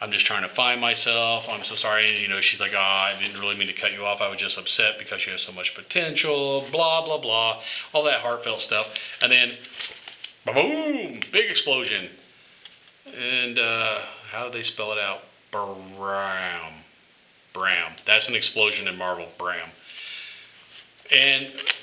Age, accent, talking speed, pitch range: 40-59, American, 170 wpm, 105-150 Hz